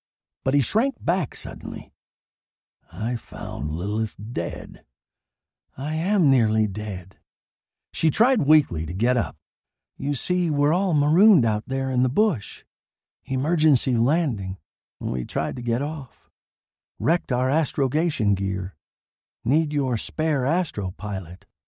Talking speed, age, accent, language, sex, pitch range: 120 wpm, 60-79, American, English, male, 95-160 Hz